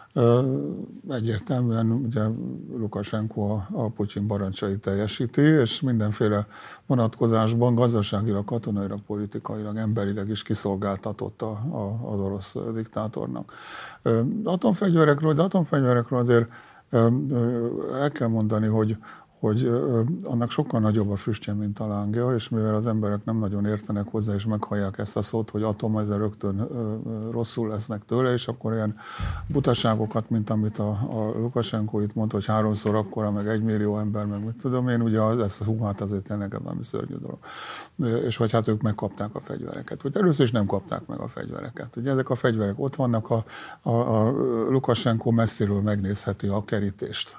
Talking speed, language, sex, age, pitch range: 160 wpm, Hungarian, male, 50-69, 105-120 Hz